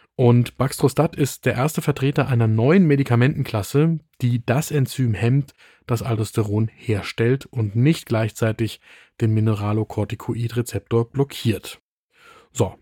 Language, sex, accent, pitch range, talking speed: German, male, German, 110-135 Hz, 110 wpm